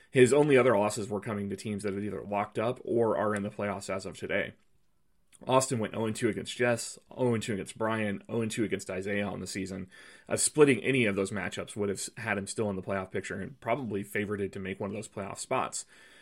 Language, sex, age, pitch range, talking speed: English, male, 30-49, 100-125 Hz, 225 wpm